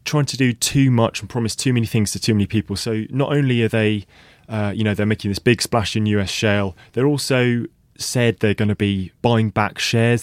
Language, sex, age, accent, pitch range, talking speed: English, male, 20-39, British, 100-120 Hz, 235 wpm